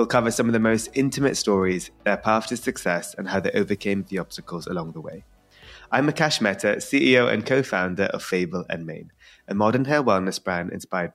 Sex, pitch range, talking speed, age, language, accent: male, 95-125 Hz, 200 wpm, 20-39, English, British